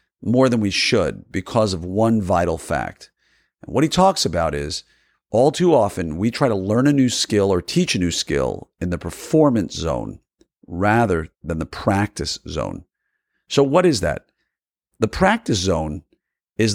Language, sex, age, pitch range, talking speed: English, male, 50-69, 100-145 Hz, 170 wpm